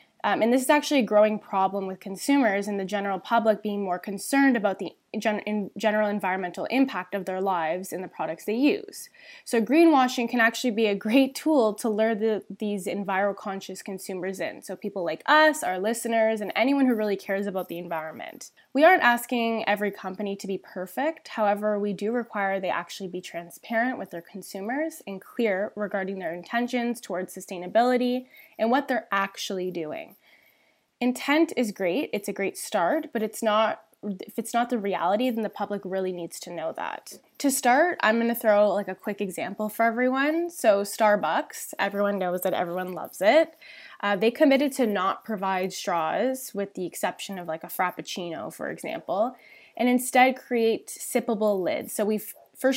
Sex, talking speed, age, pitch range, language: female, 180 wpm, 10-29, 190-245 Hz, English